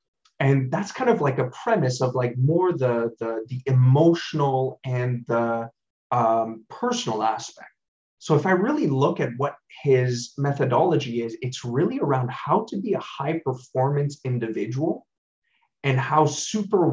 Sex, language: male, English